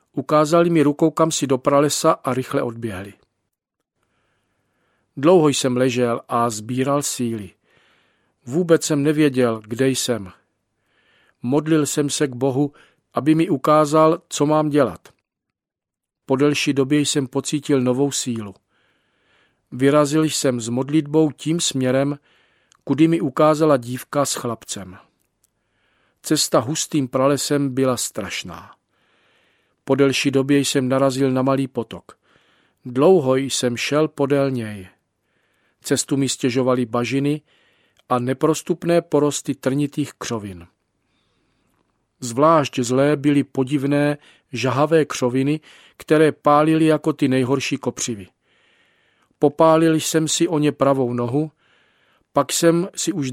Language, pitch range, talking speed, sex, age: Czech, 125-150 Hz, 115 wpm, male, 50-69